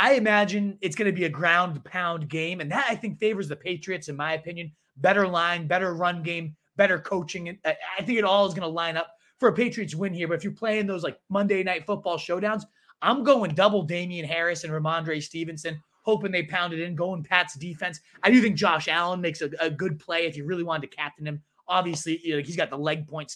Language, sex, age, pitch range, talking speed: English, male, 30-49, 155-195 Hz, 235 wpm